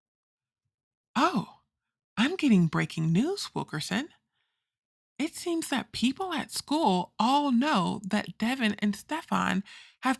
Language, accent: English, American